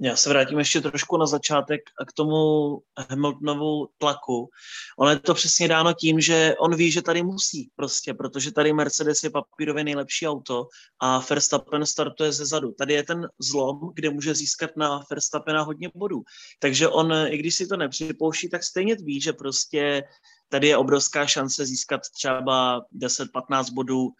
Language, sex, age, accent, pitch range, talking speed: Czech, male, 20-39, native, 135-155 Hz, 165 wpm